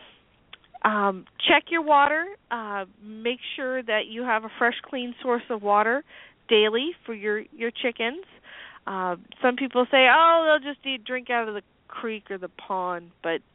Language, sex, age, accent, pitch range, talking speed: English, female, 40-59, American, 200-260 Hz, 170 wpm